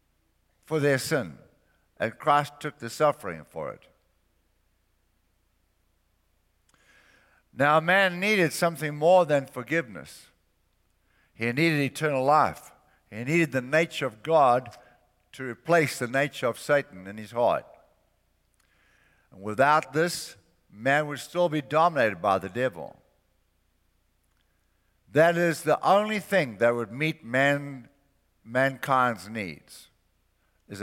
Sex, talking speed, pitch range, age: male, 115 wpm, 95-155 Hz, 60-79